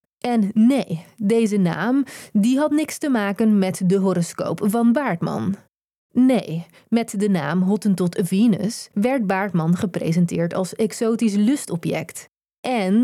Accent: Dutch